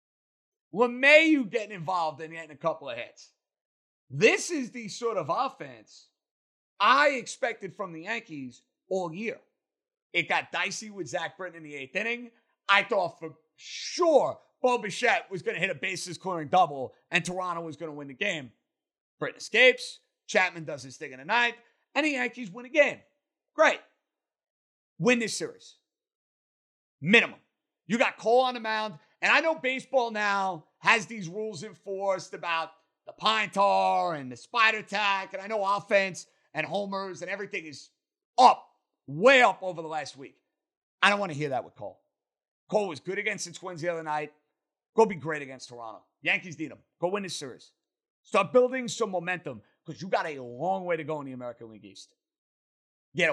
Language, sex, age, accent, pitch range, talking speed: English, male, 30-49, American, 160-240 Hz, 180 wpm